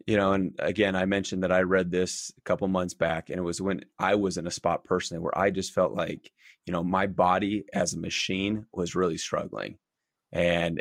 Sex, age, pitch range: male, 20-39, 85-100 Hz